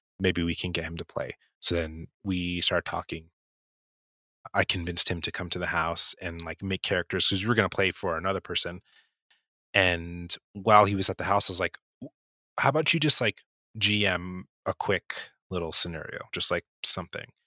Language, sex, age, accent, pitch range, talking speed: English, male, 30-49, American, 85-100 Hz, 190 wpm